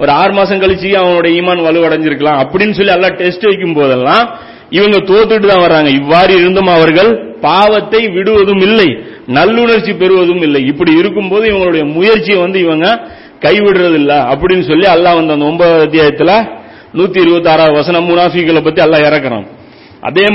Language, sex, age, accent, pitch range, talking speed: Tamil, male, 40-59, native, 155-200 Hz, 140 wpm